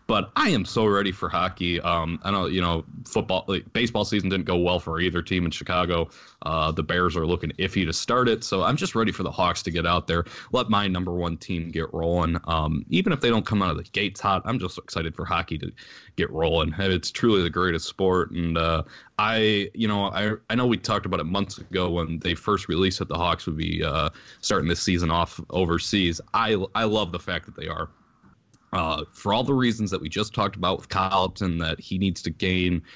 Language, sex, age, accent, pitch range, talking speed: English, male, 20-39, American, 85-105 Hz, 235 wpm